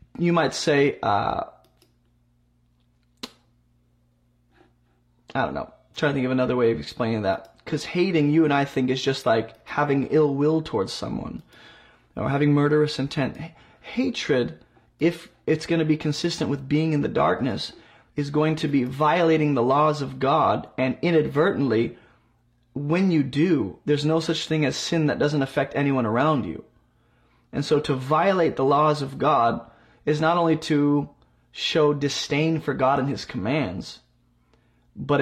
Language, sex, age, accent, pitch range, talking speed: English, male, 30-49, American, 120-155 Hz, 160 wpm